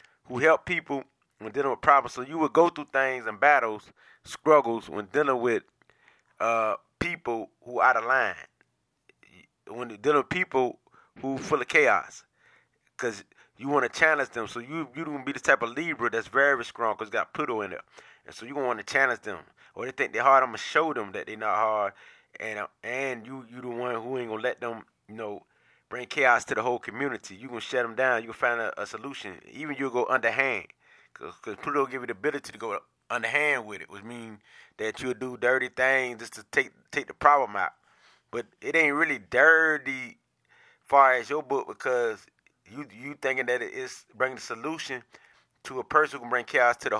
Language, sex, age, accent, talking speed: English, male, 30-49, American, 220 wpm